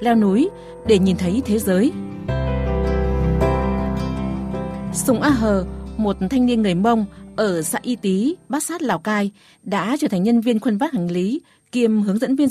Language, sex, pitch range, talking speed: Vietnamese, female, 190-250 Hz, 175 wpm